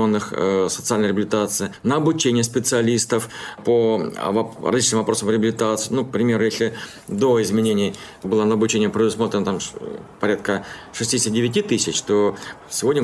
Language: Russian